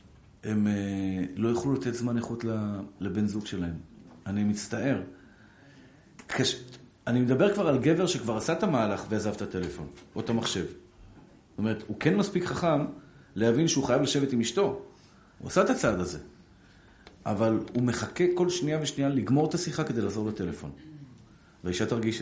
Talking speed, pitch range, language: 155 wpm, 100-145 Hz, Hebrew